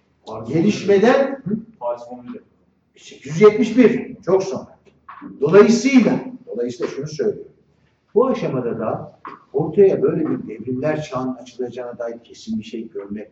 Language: Turkish